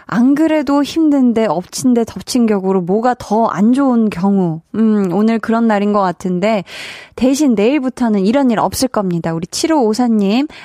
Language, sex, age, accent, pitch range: Korean, female, 20-39, native, 205-285 Hz